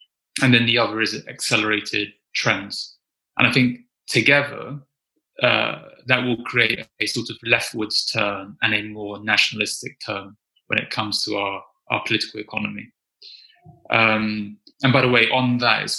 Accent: British